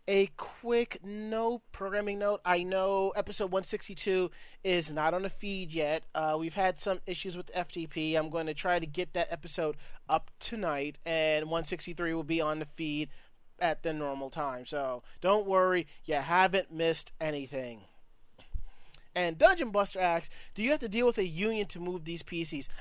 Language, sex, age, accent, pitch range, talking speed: English, male, 30-49, American, 160-200 Hz, 175 wpm